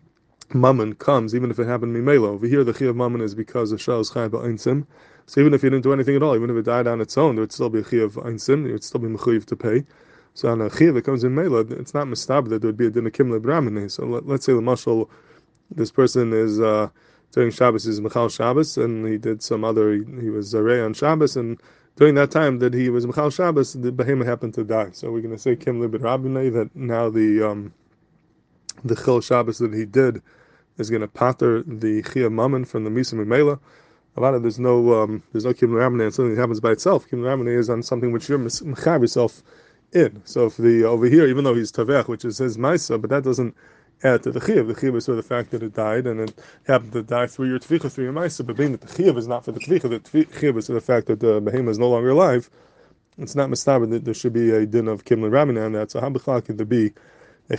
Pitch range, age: 110-130 Hz, 20-39